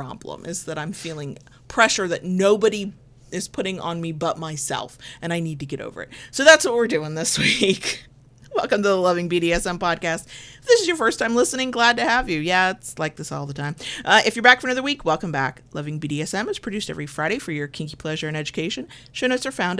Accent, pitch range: American, 155-220 Hz